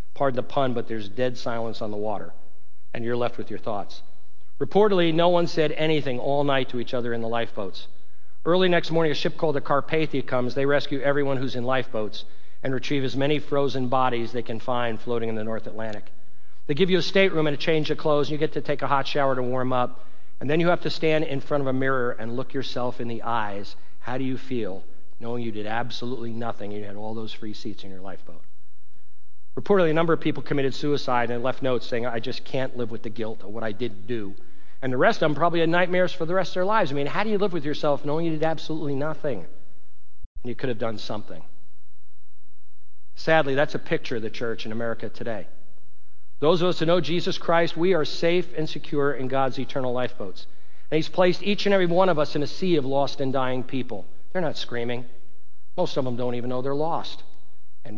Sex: male